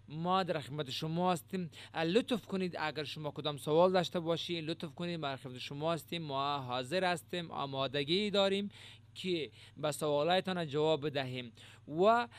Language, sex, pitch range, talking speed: Urdu, male, 135-180 Hz, 135 wpm